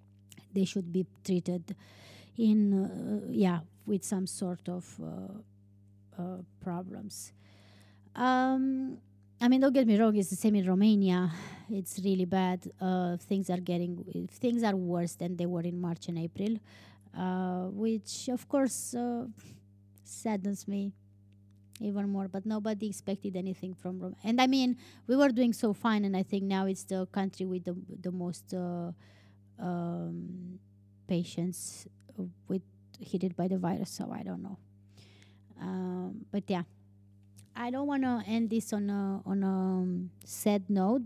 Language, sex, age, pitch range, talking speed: English, female, 20-39, 165-220 Hz, 155 wpm